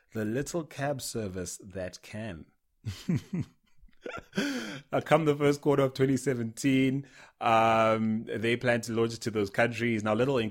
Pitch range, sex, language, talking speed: 95-115 Hz, male, English, 145 wpm